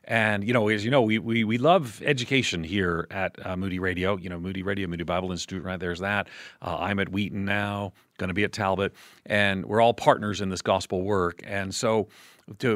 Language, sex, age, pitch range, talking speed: English, male, 40-59, 90-115 Hz, 220 wpm